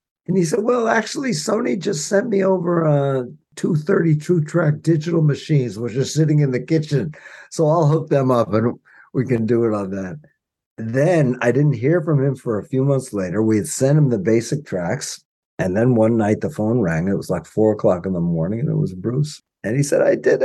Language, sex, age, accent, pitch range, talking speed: English, male, 50-69, American, 115-160 Hz, 220 wpm